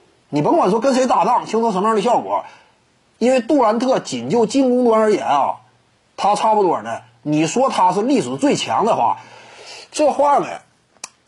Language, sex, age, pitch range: Chinese, male, 30-49, 195-265 Hz